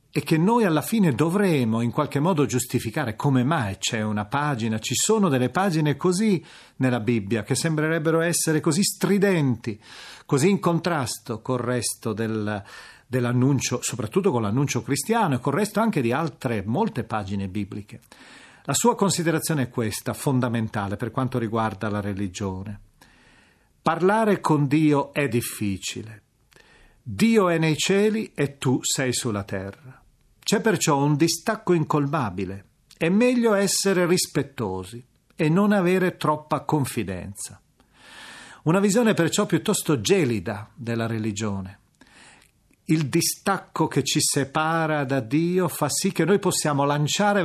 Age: 40-59